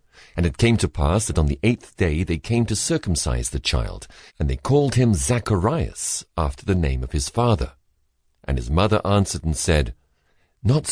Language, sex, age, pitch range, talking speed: English, male, 50-69, 75-105 Hz, 185 wpm